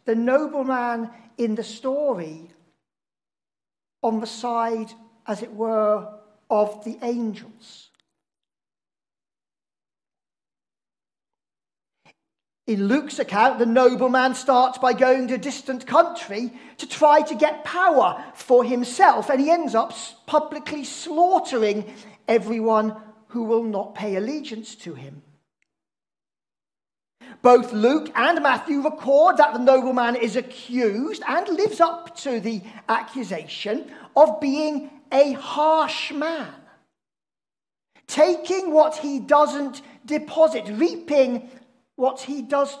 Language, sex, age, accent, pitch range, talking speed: English, male, 40-59, British, 230-310 Hz, 110 wpm